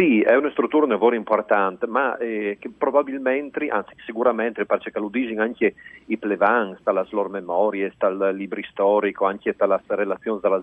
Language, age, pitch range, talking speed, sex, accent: Italian, 40-59, 100-125 Hz, 160 wpm, male, native